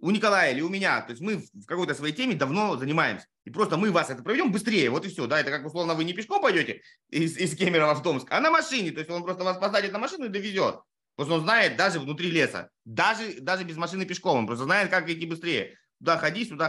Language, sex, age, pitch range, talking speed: Russian, male, 30-49, 155-205 Hz, 250 wpm